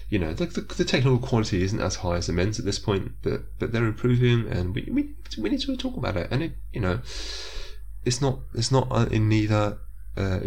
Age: 20-39